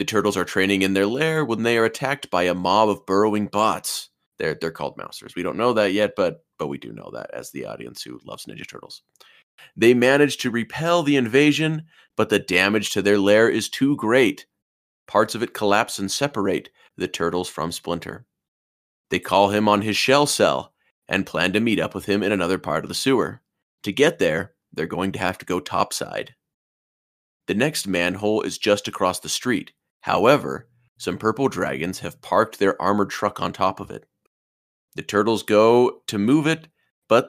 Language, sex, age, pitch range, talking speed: English, male, 30-49, 95-115 Hz, 195 wpm